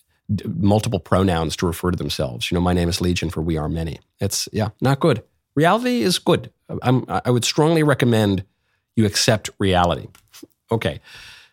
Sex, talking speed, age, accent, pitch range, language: male, 160 wpm, 50-69, American, 90-120 Hz, English